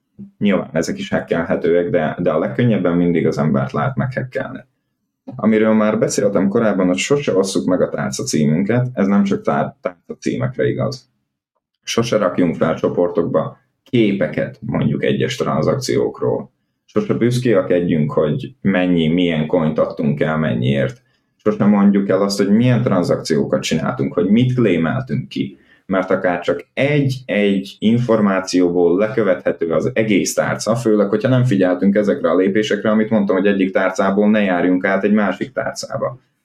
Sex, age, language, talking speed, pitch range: male, 20-39, Hungarian, 145 wpm, 90-120 Hz